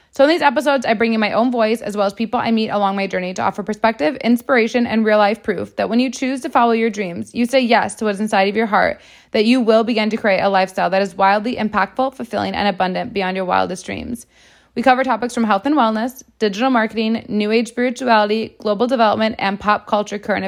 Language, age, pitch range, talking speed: English, 20-39, 200-245 Hz, 235 wpm